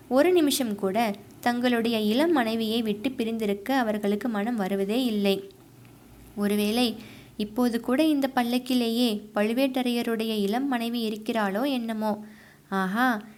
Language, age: Tamil, 20-39